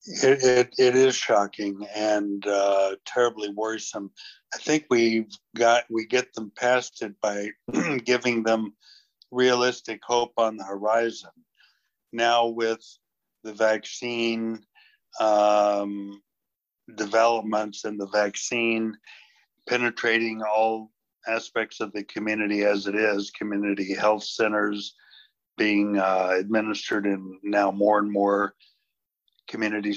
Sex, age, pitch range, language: male, 60-79, 100-115 Hz, English